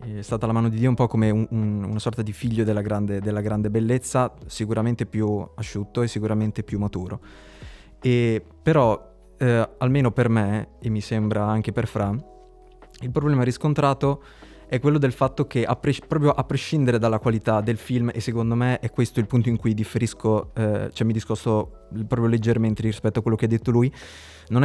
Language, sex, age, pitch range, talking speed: Italian, male, 20-39, 110-125 Hz, 195 wpm